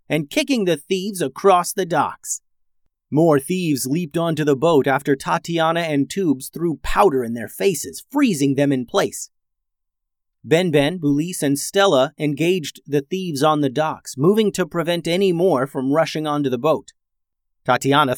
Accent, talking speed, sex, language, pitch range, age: American, 155 wpm, male, English, 130-170 Hz, 30-49